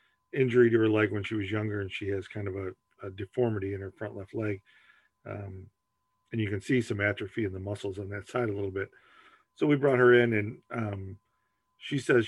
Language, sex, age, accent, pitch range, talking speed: English, male, 40-59, American, 105-125 Hz, 225 wpm